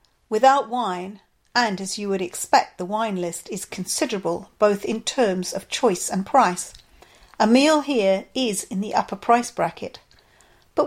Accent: British